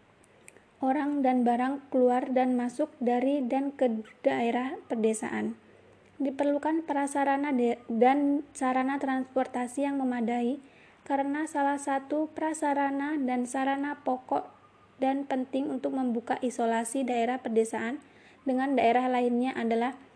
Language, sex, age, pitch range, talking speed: Indonesian, female, 20-39, 240-275 Hz, 105 wpm